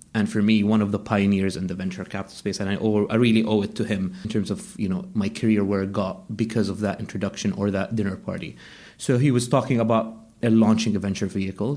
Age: 30-49